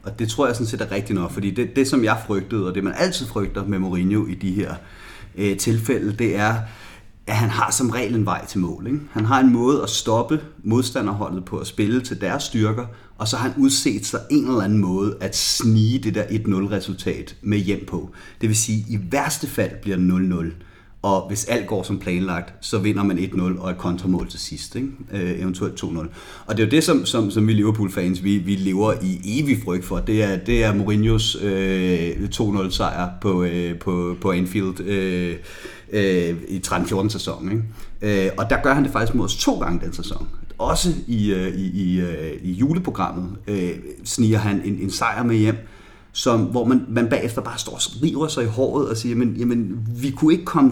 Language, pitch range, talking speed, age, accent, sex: Danish, 95-120 Hz, 210 wpm, 30-49, native, male